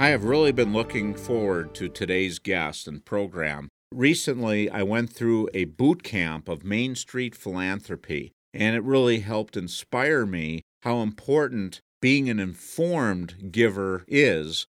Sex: male